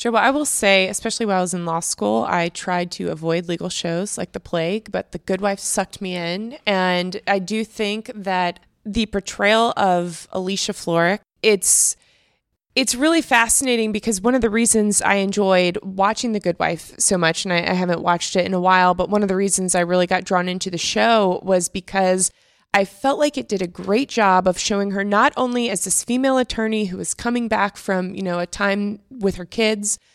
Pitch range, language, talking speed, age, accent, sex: 180-220 Hz, English, 215 wpm, 20-39, American, female